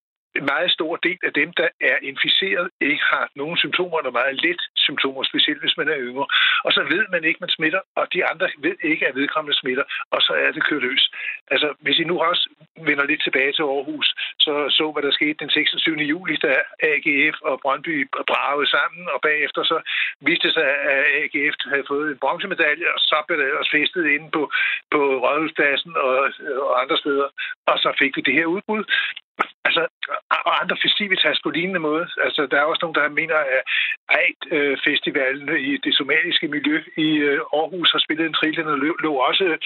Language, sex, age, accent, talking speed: Danish, male, 60-79, native, 195 wpm